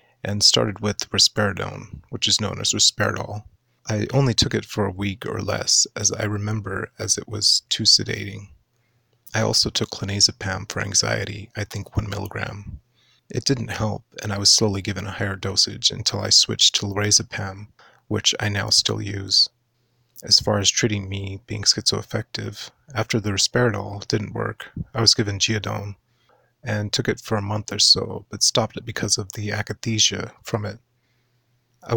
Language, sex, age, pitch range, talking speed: English, male, 30-49, 100-115 Hz, 170 wpm